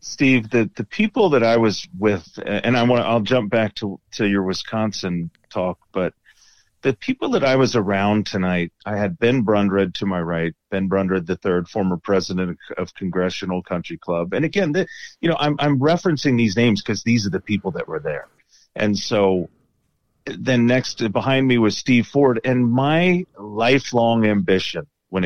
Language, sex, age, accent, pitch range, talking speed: English, male, 40-59, American, 95-125 Hz, 180 wpm